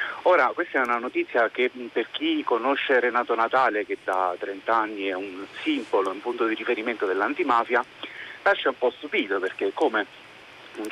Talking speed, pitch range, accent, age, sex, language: 165 wpm, 115-170 Hz, native, 40-59, male, Italian